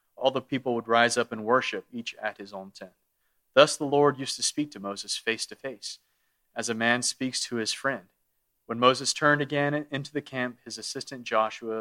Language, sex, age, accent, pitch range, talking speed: English, male, 30-49, American, 115-145 Hz, 210 wpm